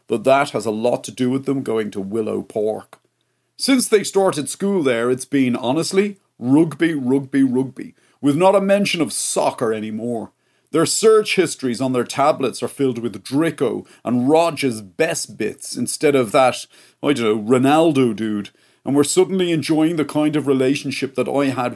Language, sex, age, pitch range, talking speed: English, male, 40-59, 125-160 Hz, 175 wpm